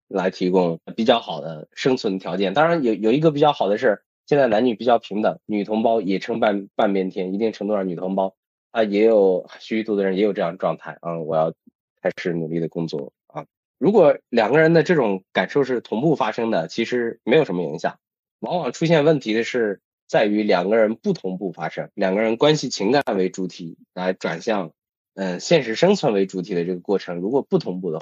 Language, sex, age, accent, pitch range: Chinese, male, 20-39, native, 95-115 Hz